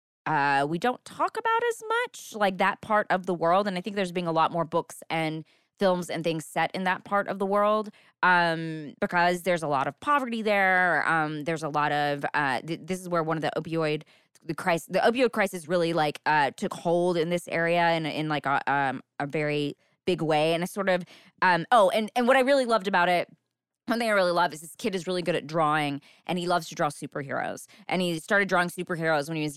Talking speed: 240 wpm